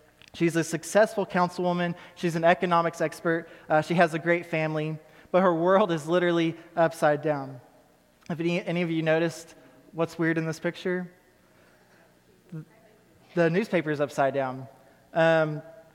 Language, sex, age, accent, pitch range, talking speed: English, male, 20-39, American, 150-170 Hz, 145 wpm